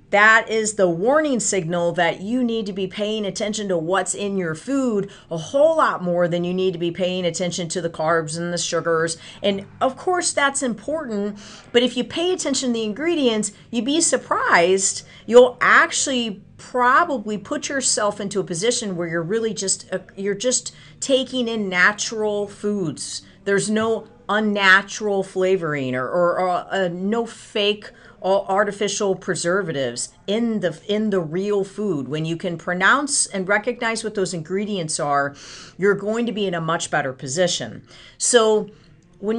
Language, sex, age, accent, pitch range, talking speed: English, female, 40-59, American, 175-230 Hz, 165 wpm